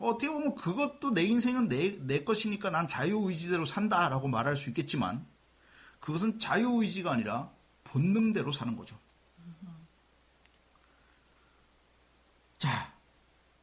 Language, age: Korean, 40-59